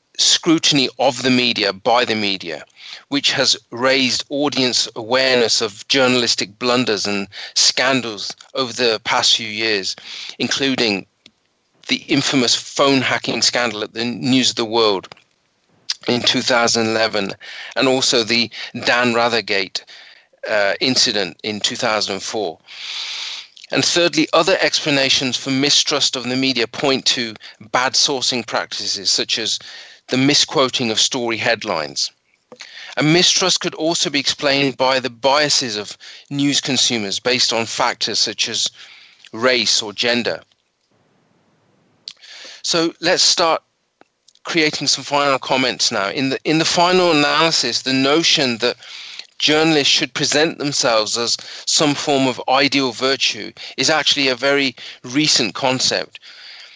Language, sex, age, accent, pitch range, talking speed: English, male, 40-59, British, 115-145 Hz, 125 wpm